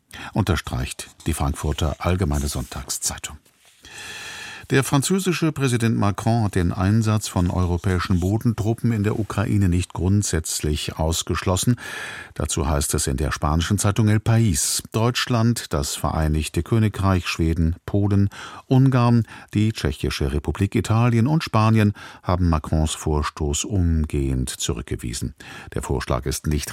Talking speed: 115 wpm